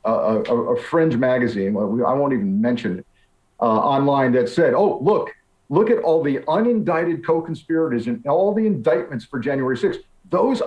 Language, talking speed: English, 170 wpm